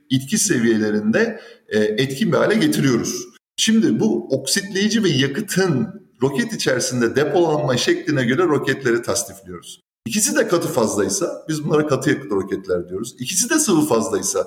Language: Turkish